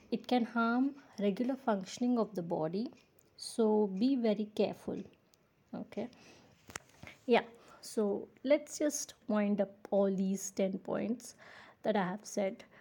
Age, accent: 20-39, native